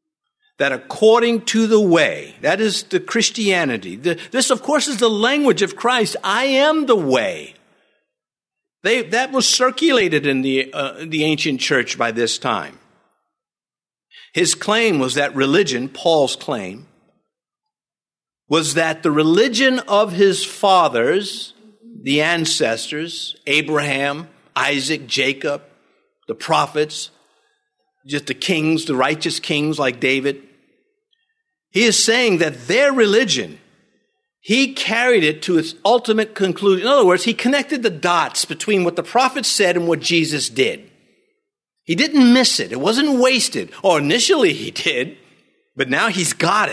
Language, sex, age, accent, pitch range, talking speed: English, male, 50-69, American, 155-250 Hz, 135 wpm